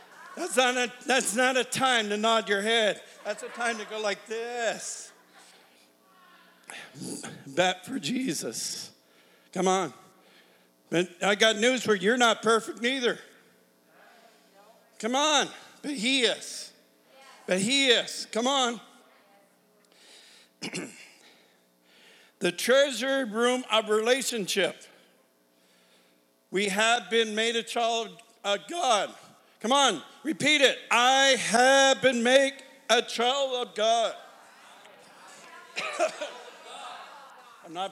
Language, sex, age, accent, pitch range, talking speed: English, male, 50-69, American, 170-255 Hz, 110 wpm